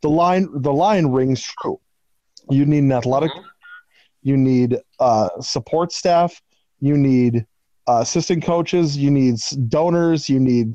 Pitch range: 130-165 Hz